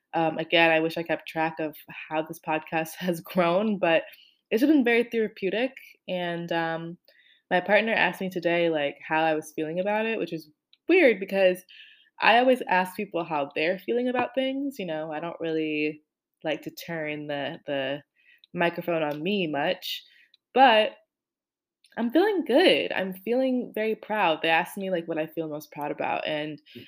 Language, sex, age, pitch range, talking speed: English, female, 20-39, 160-225 Hz, 175 wpm